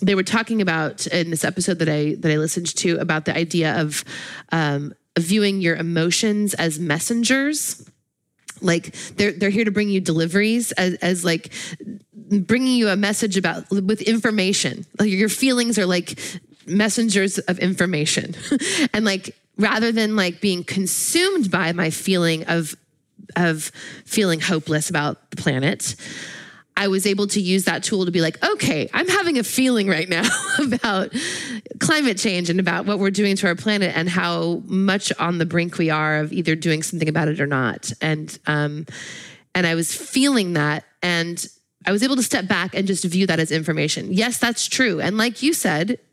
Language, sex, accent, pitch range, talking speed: English, female, American, 165-210 Hz, 180 wpm